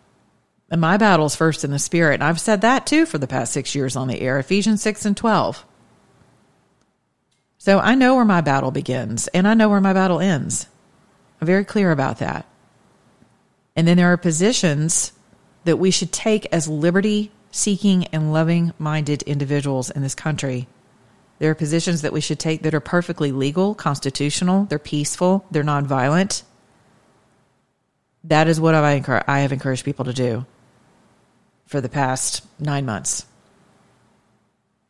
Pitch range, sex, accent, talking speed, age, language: 135-175 Hz, female, American, 155 wpm, 40-59, English